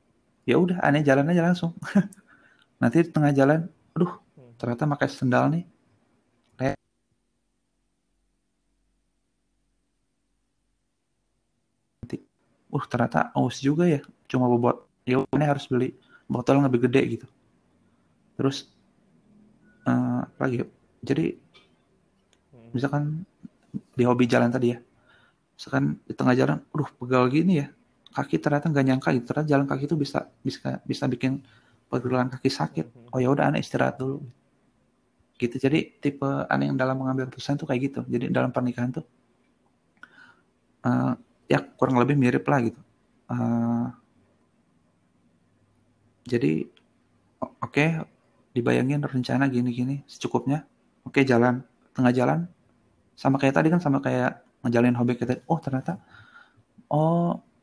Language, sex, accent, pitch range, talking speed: Indonesian, male, native, 120-145 Hz, 125 wpm